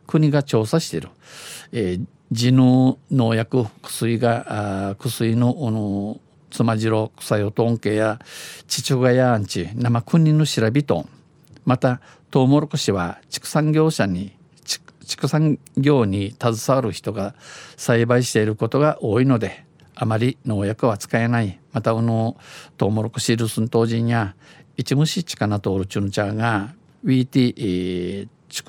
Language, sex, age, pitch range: Japanese, male, 50-69, 110-140 Hz